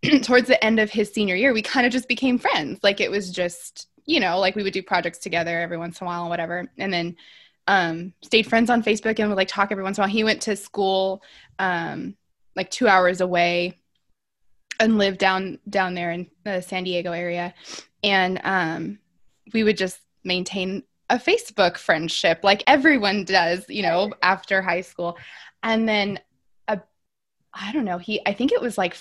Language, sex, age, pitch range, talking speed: English, female, 20-39, 175-220 Hz, 195 wpm